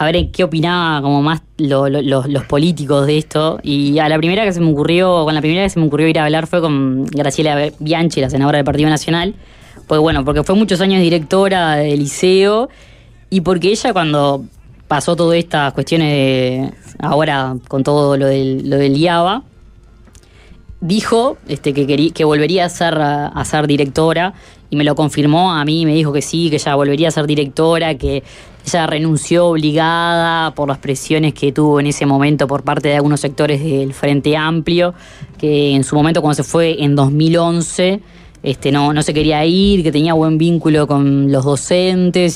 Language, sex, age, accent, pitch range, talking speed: Spanish, female, 20-39, Argentinian, 140-165 Hz, 195 wpm